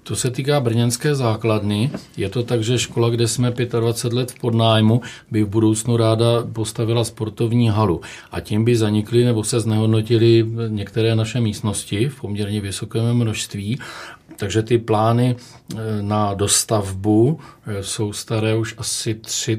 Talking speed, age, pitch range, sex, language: 145 wpm, 40-59, 105-115 Hz, male, Czech